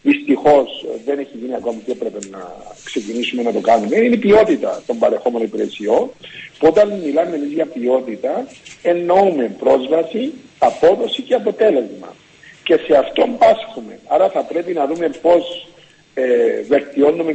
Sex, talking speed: male, 135 wpm